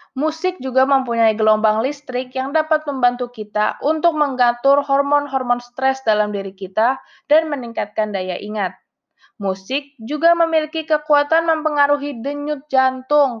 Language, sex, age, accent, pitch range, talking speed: Indonesian, female, 20-39, native, 215-275 Hz, 120 wpm